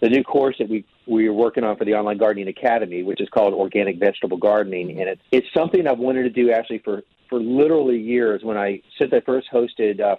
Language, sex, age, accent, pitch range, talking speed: English, male, 40-59, American, 105-130 Hz, 235 wpm